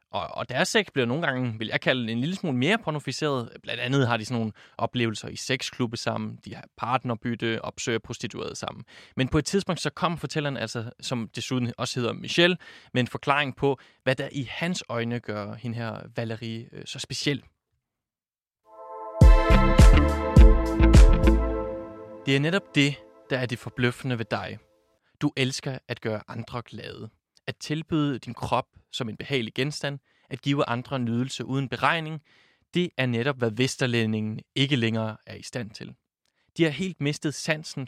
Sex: male